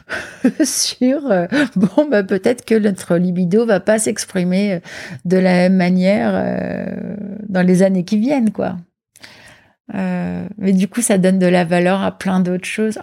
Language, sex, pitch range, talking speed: French, female, 175-205 Hz, 160 wpm